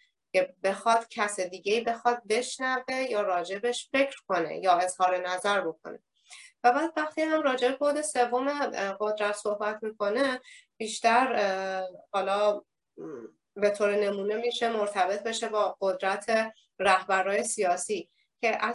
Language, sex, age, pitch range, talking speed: Persian, female, 30-49, 190-230 Hz, 120 wpm